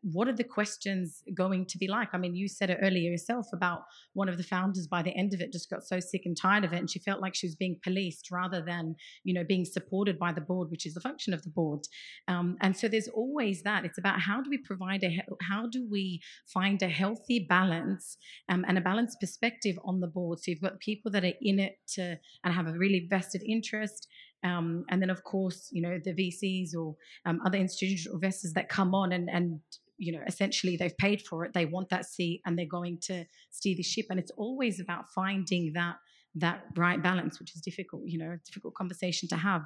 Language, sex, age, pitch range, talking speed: English, female, 30-49, 175-195 Hz, 235 wpm